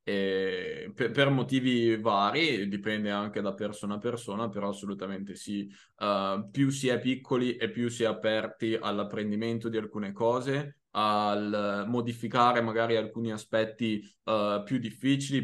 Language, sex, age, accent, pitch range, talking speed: Italian, male, 20-39, native, 105-120 Hz, 125 wpm